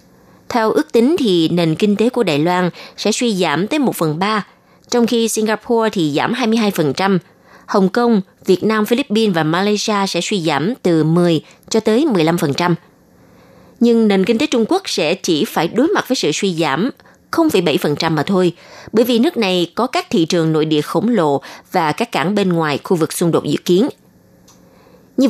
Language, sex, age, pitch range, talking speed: Vietnamese, female, 20-39, 170-230 Hz, 190 wpm